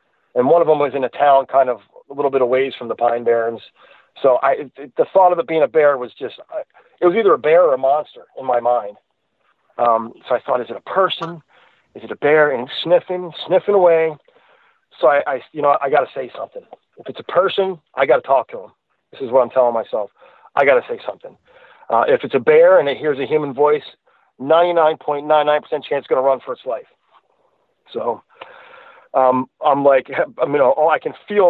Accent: American